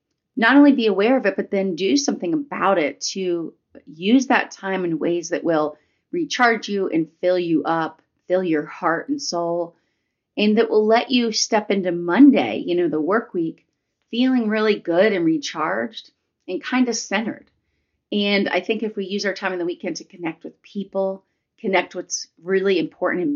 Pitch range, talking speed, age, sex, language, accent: 170-240 Hz, 190 wpm, 30-49, female, English, American